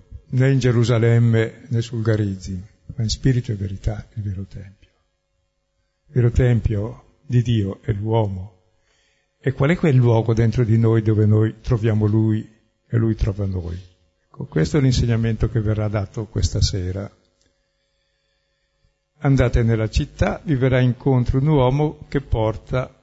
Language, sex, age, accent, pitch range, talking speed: Italian, male, 60-79, native, 105-125 Hz, 145 wpm